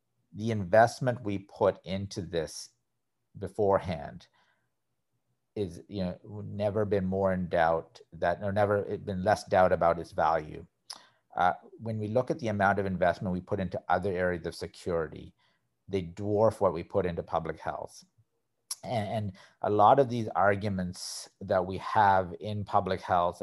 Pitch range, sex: 95-110 Hz, male